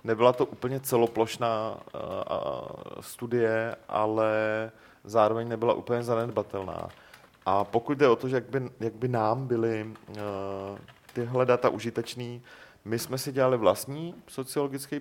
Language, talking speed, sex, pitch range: Czech, 130 wpm, male, 100-120 Hz